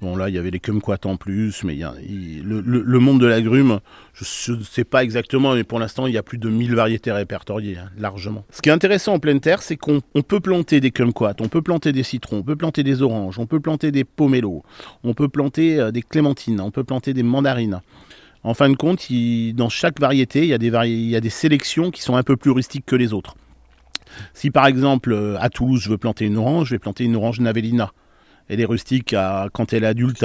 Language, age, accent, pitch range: French, 40-59, French, 110-130 Hz